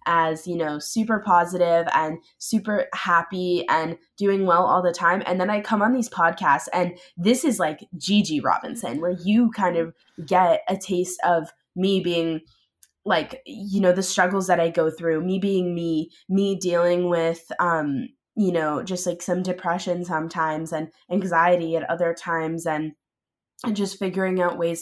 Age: 20-39